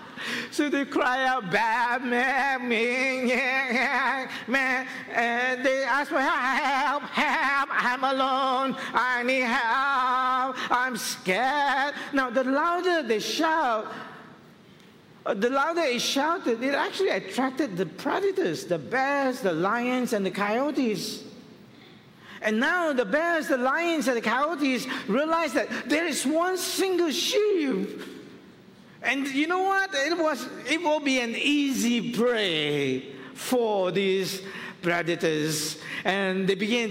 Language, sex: English, male